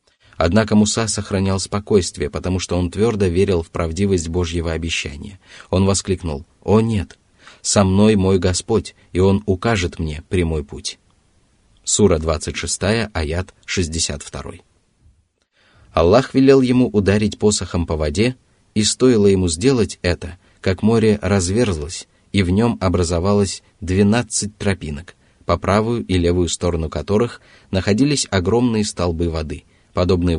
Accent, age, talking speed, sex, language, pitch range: native, 20-39, 125 wpm, male, Russian, 85-105 Hz